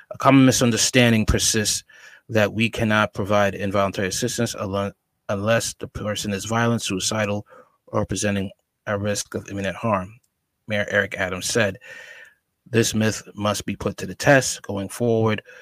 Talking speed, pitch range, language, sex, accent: 140 wpm, 100-110 Hz, English, male, American